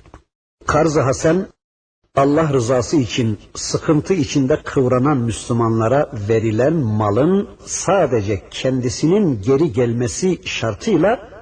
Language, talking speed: Turkish, 85 wpm